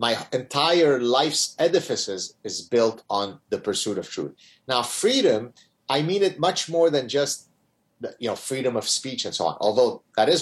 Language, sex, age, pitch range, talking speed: English, male, 30-49, 125-175 Hz, 180 wpm